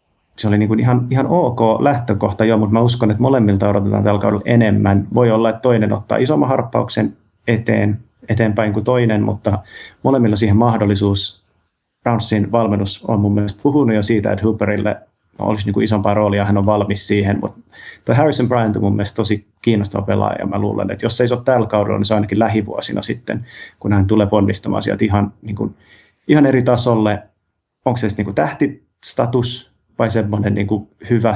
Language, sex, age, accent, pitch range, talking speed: Finnish, male, 30-49, native, 100-115 Hz, 175 wpm